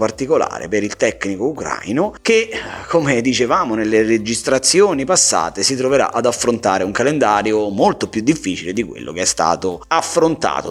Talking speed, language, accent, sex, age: 145 wpm, Italian, native, male, 30-49